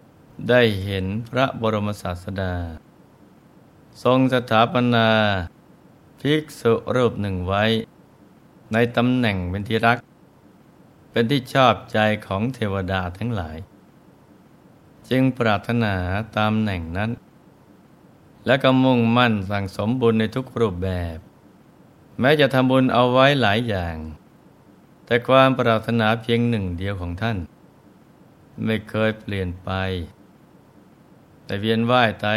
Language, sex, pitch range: Thai, male, 95-120 Hz